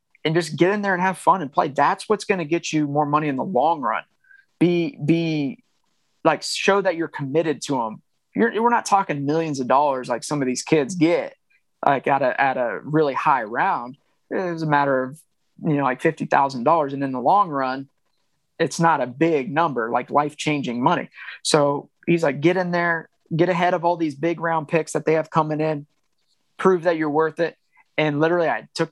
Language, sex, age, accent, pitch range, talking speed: English, male, 20-39, American, 145-170 Hz, 215 wpm